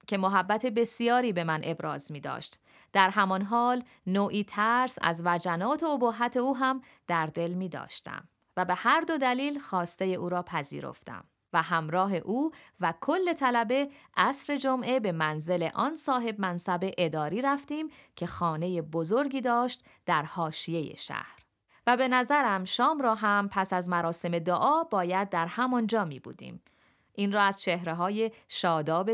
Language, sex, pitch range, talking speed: Persian, female, 170-245 Hz, 155 wpm